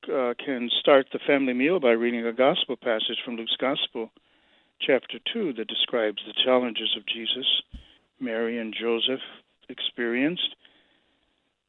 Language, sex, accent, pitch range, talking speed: English, male, American, 115-155 Hz, 135 wpm